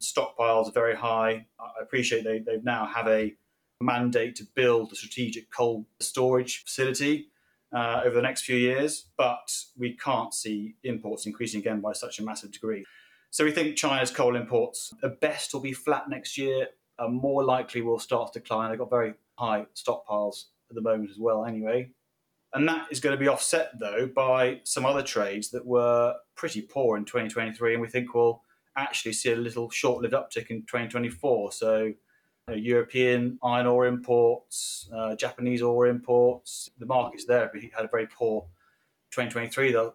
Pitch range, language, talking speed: 110-130 Hz, English, 170 wpm